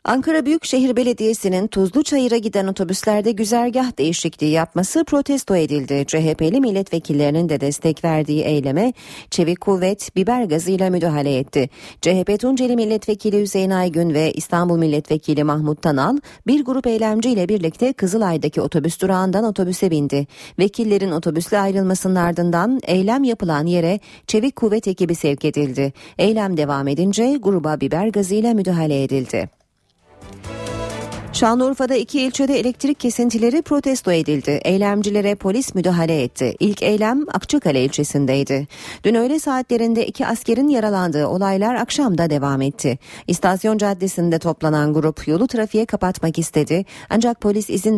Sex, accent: female, native